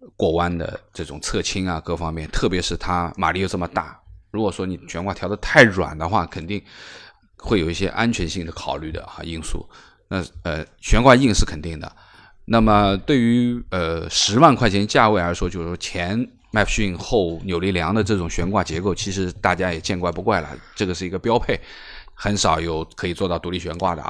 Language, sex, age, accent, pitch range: Chinese, male, 20-39, native, 85-105 Hz